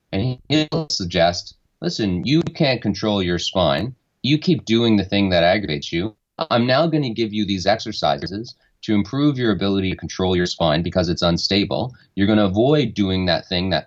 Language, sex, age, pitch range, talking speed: English, male, 30-49, 90-110 Hz, 180 wpm